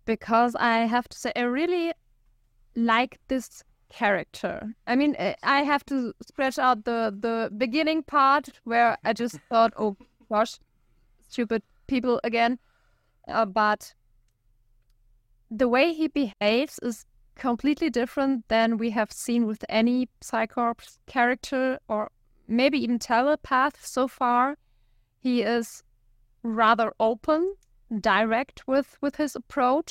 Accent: German